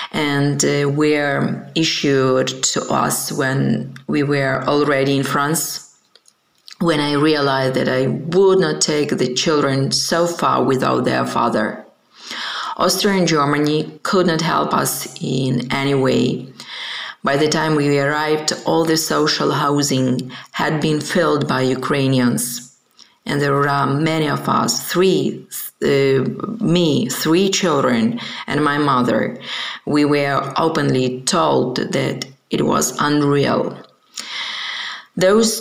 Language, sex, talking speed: Ukrainian, female, 125 wpm